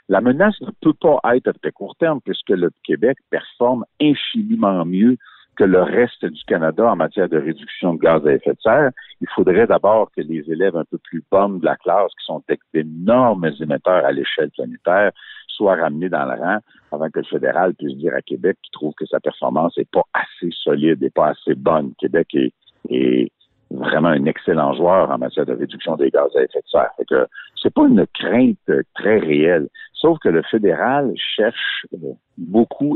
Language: French